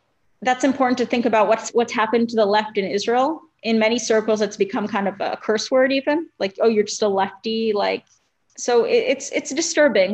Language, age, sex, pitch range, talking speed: English, 20-39, female, 210-250 Hz, 215 wpm